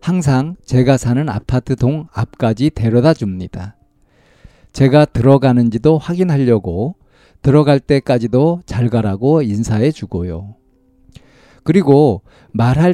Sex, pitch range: male, 110-150 Hz